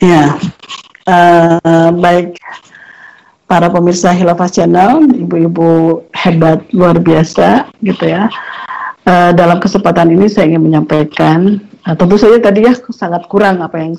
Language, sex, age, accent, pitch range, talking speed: Indonesian, female, 50-69, native, 170-215 Hz, 125 wpm